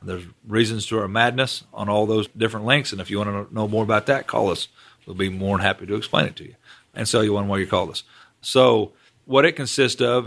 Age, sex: 40-59, male